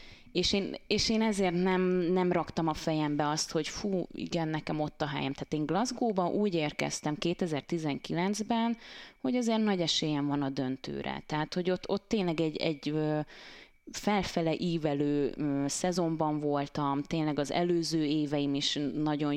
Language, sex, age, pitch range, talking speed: Hungarian, female, 20-39, 150-185 Hz, 150 wpm